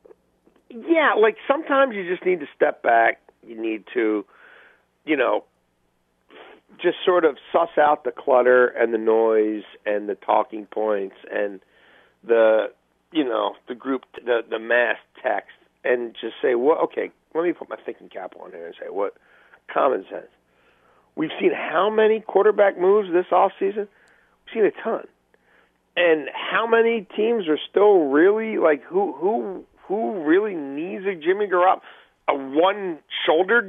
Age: 50-69